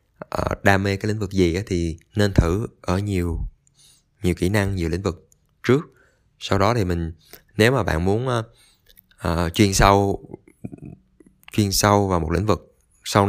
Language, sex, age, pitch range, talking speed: Vietnamese, male, 20-39, 90-110 Hz, 175 wpm